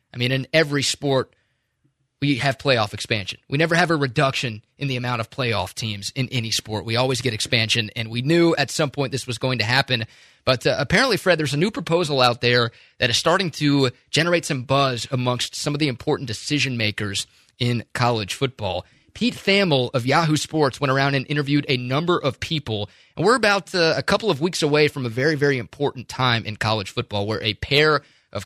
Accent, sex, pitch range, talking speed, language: American, male, 115-150 Hz, 210 wpm, English